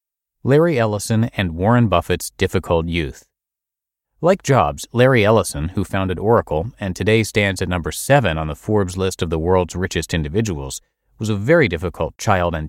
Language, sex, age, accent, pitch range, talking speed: English, male, 30-49, American, 85-120 Hz, 165 wpm